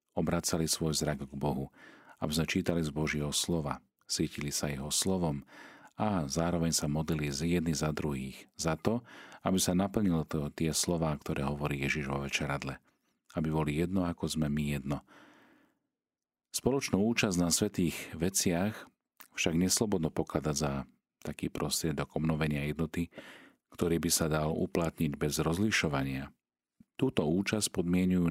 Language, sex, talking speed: Slovak, male, 135 wpm